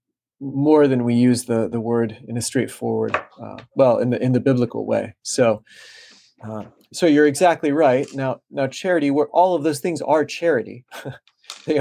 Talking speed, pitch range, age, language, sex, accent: 180 wpm, 115-145 Hz, 40-59, English, male, American